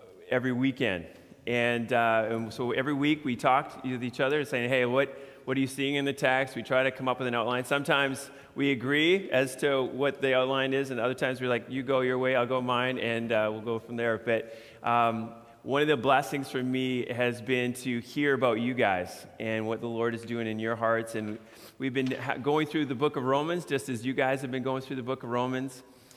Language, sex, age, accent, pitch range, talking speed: English, male, 30-49, American, 120-135 Hz, 235 wpm